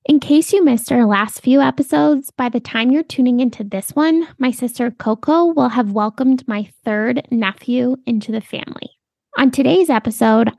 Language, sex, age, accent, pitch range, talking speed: English, female, 20-39, American, 225-290 Hz, 175 wpm